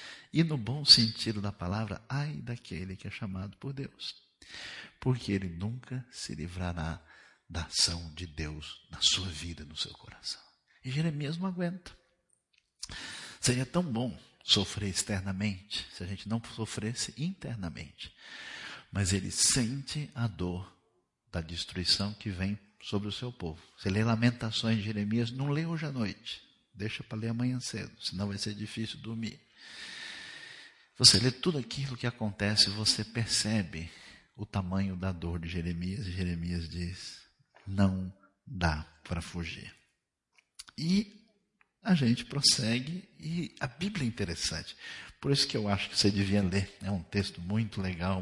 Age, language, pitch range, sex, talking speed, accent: 50-69, Portuguese, 95-120 Hz, male, 150 wpm, Brazilian